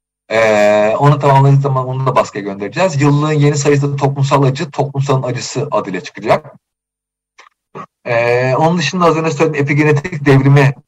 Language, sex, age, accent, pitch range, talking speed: Turkish, male, 40-59, native, 120-155 Hz, 140 wpm